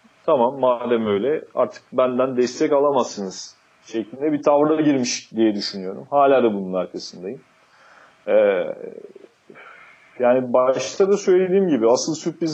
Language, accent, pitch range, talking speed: Turkish, native, 115-145 Hz, 120 wpm